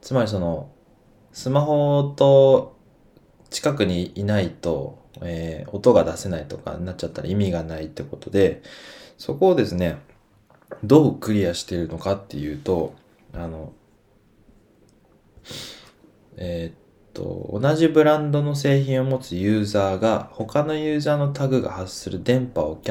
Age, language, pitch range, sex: 20-39, Japanese, 90-135 Hz, male